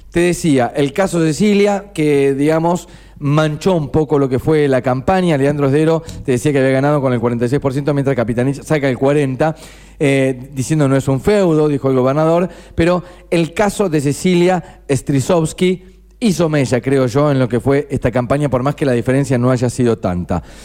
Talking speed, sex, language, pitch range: 190 wpm, male, Spanish, 130-160 Hz